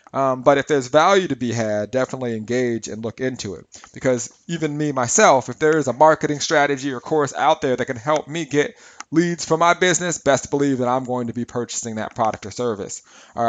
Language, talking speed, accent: English, 225 wpm, American